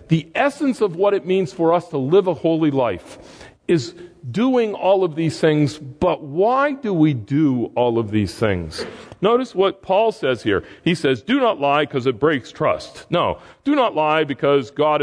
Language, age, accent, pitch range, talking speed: English, 40-59, American, 140-210 Hz, 190 wpm